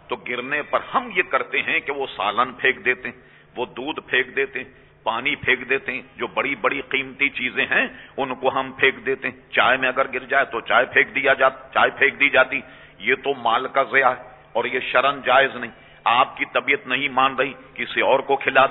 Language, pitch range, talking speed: English, 130-165 Hz, 205 wpm